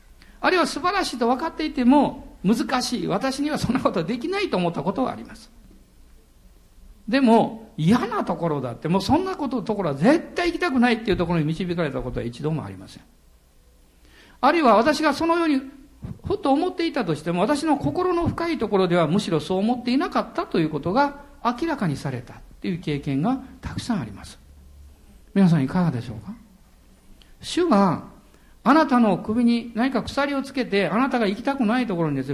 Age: 50-69